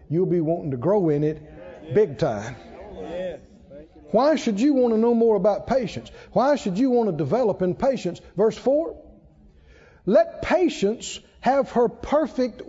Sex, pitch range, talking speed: male, 190-285 Hz, 155 wpm